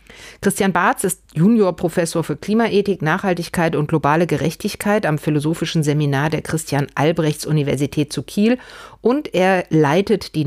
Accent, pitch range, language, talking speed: German, 140-180 Hz, German, 120 wpm